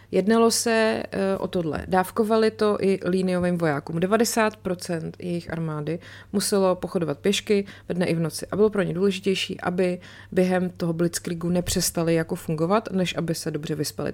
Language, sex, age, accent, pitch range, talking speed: Czech, female, 30-49, native, 165-195 Hz, 155 wpm